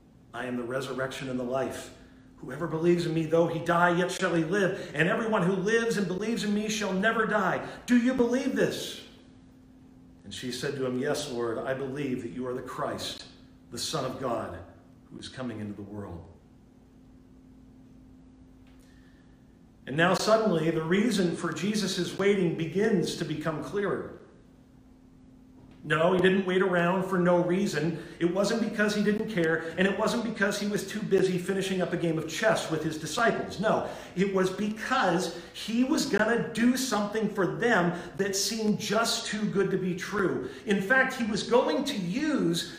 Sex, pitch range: male, 150-210 Hz